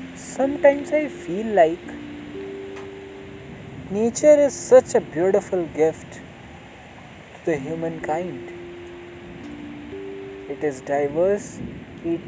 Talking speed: 85 wpm